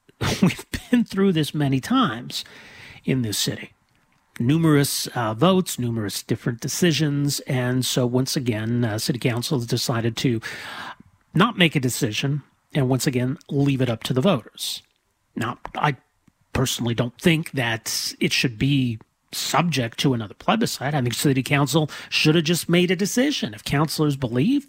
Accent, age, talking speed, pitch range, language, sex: American, 40-59, 155 wpm, 125-160 Hz, English, male